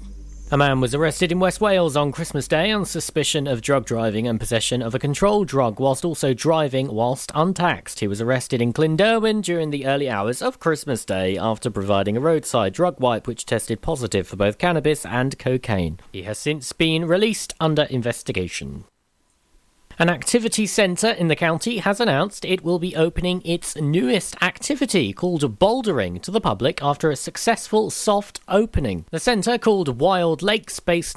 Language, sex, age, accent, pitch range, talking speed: English, male, 40-59, British, 125-180 Hz, 175 wpm